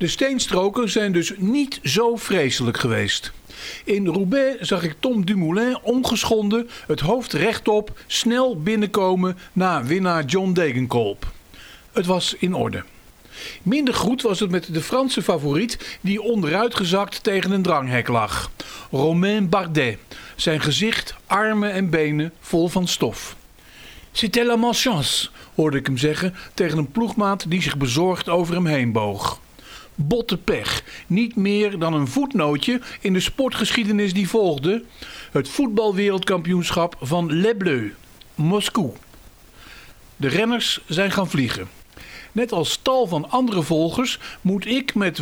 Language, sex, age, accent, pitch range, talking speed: Dutch, male, 50-69, Dutch, 165-225 Hz, 135 wpm